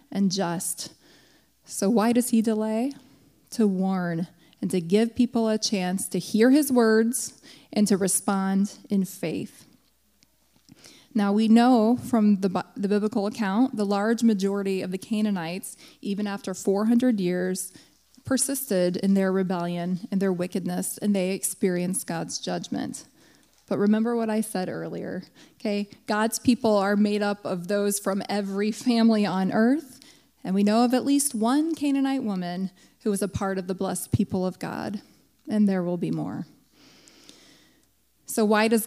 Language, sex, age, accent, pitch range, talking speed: English, female, 20-39, American, 190-230 Hz, 155 wpm